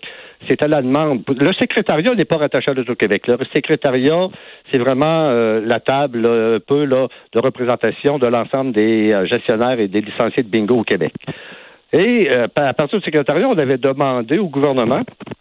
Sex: male